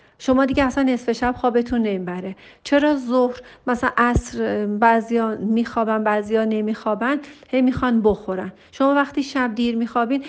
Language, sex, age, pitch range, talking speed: Persian, female, 40-59, 215-260 Hz, 145 wpm